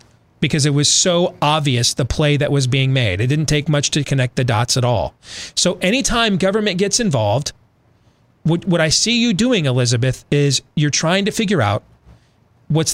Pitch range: 120-170 Hz